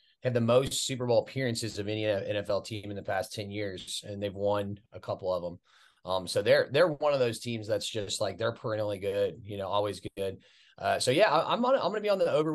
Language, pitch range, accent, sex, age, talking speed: English, 105-120 Hz, American, male, 30-49, 250 wpm